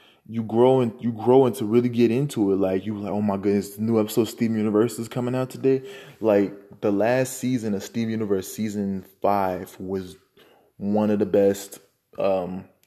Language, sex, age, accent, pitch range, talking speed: English, male, 20-39, American, 100-120 Hz, 190 wpm